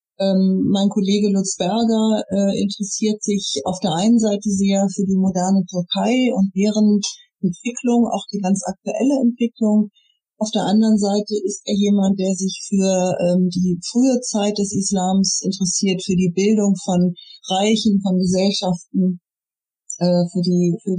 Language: German